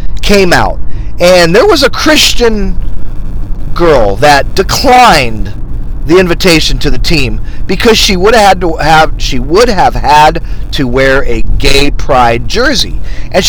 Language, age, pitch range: English, 40-59, 120-180 Hz